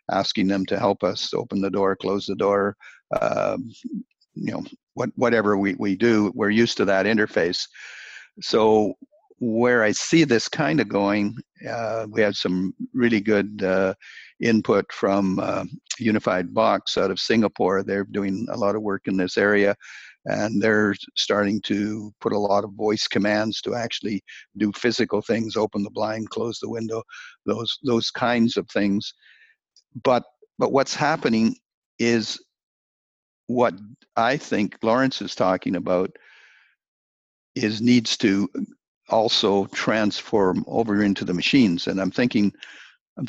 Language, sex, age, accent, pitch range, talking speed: English, male, 60-79, American, 95-115 Hz, 150 wpm